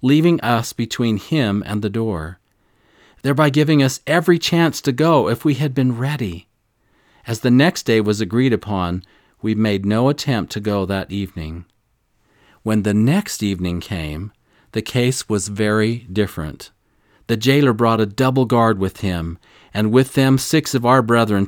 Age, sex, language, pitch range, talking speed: 40-59, male, English, 105-130 Hz, 165 wpm